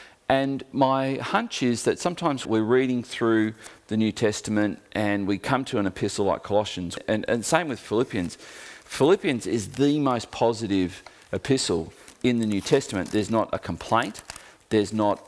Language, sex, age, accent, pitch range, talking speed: English, male, 40-59, Australian, 95-125 Hz, 160 wpm